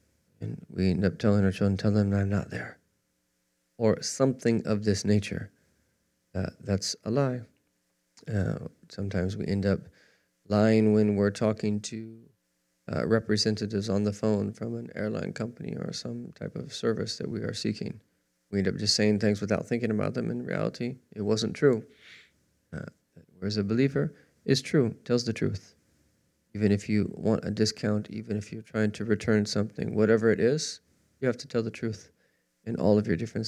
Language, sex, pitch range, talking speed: English, male, 95-115 Hz, 180 wpm